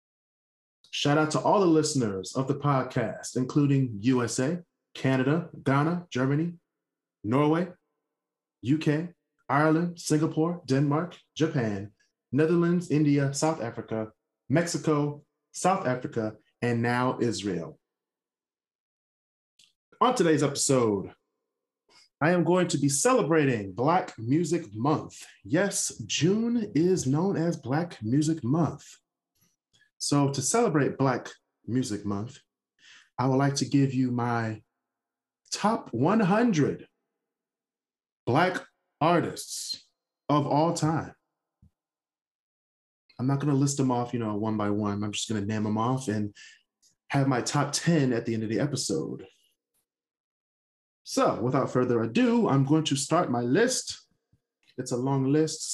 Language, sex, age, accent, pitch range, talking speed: English, male, 30-49, American, 115-155 Hz, 120 wpm